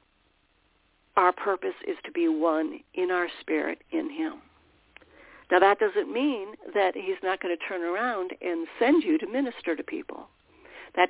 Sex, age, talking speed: female, 60-79, 160 wpm